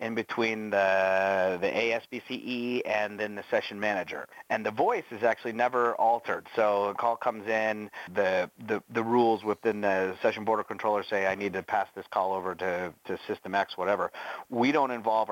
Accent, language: American, English